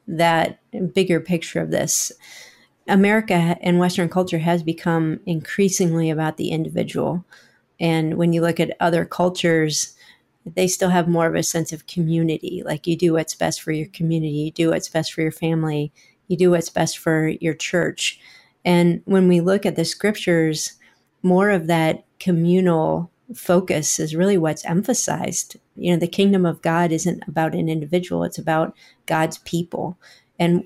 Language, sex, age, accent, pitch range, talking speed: English, female, 40-59, American, 160-180 Hz, 165 wpm